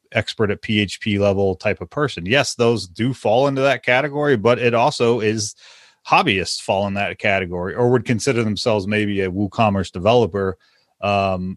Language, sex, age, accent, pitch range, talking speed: English, male, 30-49, American, 90-110 Hz, 165 wpm